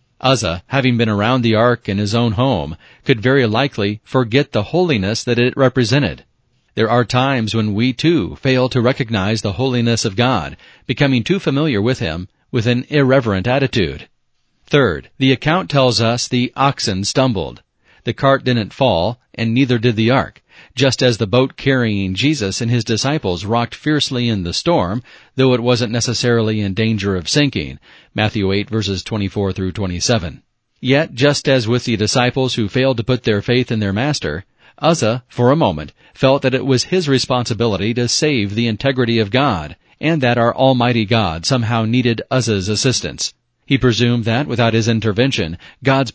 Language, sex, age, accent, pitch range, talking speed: English, male, 40-59, American, 110-130 Hz, 175 wpm